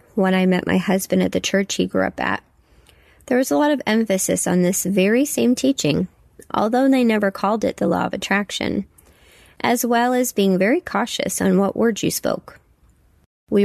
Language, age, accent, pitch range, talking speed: English, 20-39, American, 180-225 Hz, 195 wpm